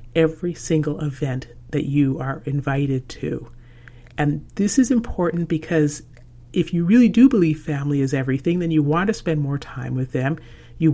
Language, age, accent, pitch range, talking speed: English, 50-69, American, 135-165 Hz, 170 wpm